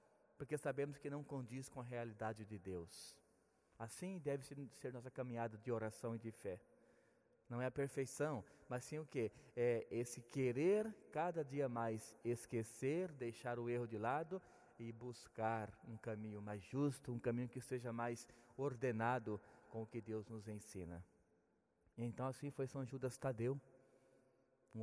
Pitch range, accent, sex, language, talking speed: 110-140 Hz, Brazilian, male, Portuguese, 155 wpm